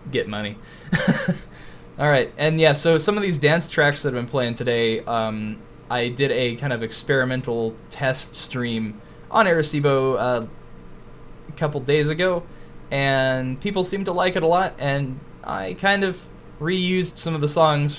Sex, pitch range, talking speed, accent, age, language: male, 115-160 Hz, 165 wpm, American, 10-29, English